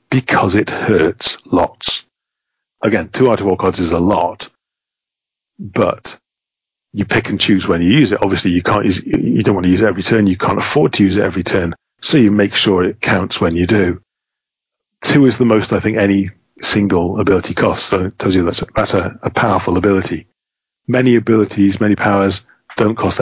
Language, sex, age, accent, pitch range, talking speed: English, male, 40-59, British, 95-105 Hz, 200 wpm